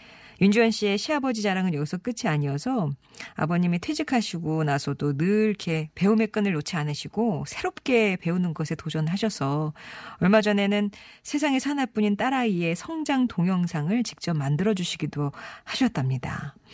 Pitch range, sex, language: 160-220 Hz, female, Korean